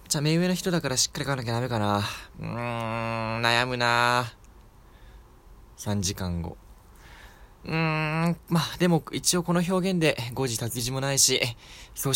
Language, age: Japanese, 20-39